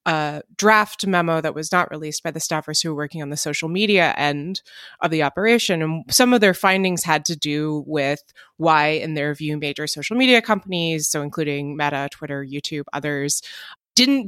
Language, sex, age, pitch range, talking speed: English, female, 20-39, 150-195 Hz, 190 wpm